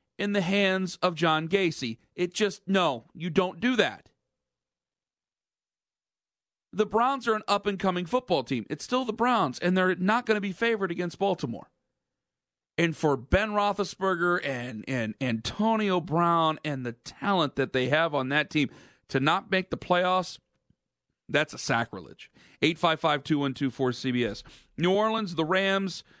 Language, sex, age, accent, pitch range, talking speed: English, male, 40-59, American, 145-180 Hz, 145 wpm